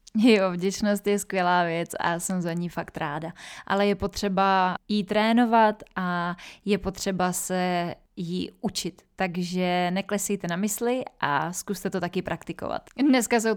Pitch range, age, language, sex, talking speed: 190-215 Hz, 20-39, Czech, female, 150 wpm